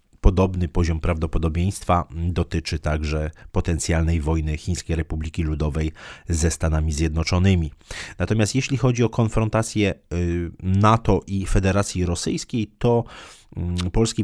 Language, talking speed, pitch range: Polish, 100 wpm, 85-110 Hz